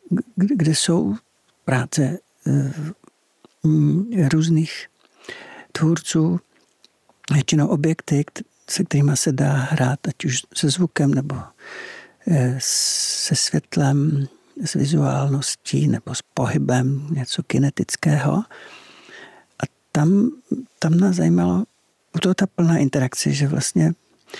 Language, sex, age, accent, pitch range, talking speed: Czech, male, 60-79, native, 140-185 Hz, 95 wpm